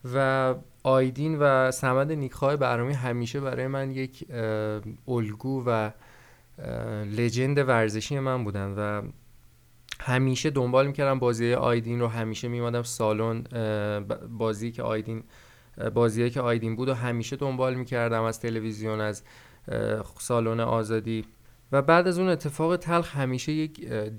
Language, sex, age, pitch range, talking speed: Persian, male, 20-39, 115-130 Hz, 125 wpm